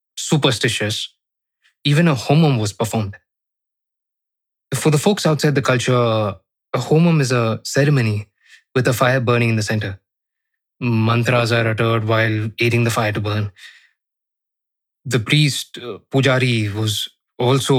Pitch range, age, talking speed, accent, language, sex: 110-130 Hz, 20-39, 130 wpm, native, Hindi, male